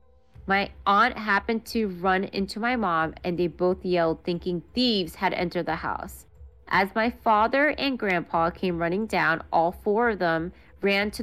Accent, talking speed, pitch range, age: American, 170 wpm, 175-210 Hz, 30-49